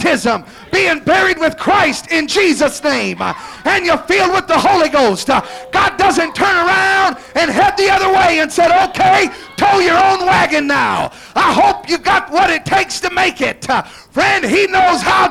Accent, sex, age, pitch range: American, male, 40-59, 330-380 Hz